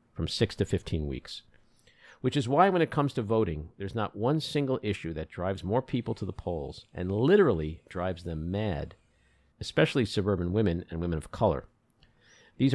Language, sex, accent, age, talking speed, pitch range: English, male, American, 50-69, 180 wpm, 85-120 Hz